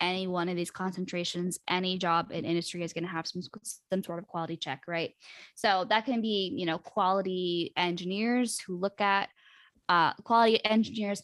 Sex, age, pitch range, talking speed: female, 20-39, 180-205 Hz, 175 wpm